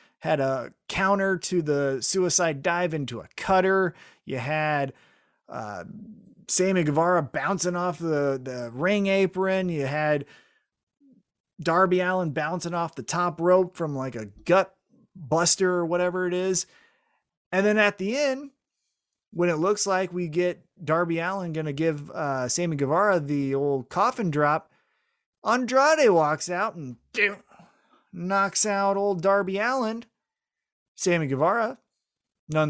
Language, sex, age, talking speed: English, male, 30-49, 135 wpm